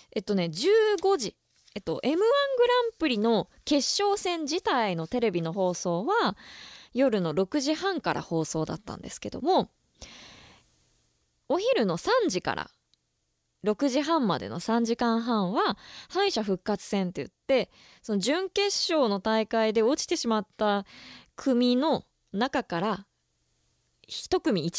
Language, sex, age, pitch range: Japanese, female, 20-39, 185-280 Hz